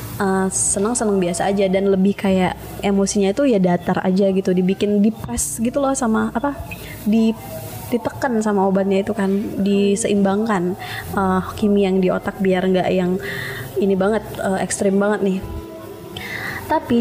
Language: Indonesian